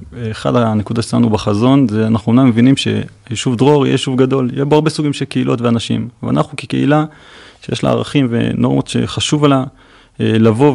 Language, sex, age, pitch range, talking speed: Hebrew, male, 30-49, 110-135 Hz, 155 wpm